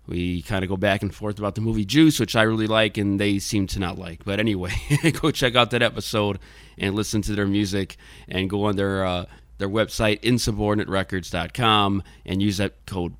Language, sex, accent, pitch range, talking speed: English, male, American, 95-120 Hz, 205 wpm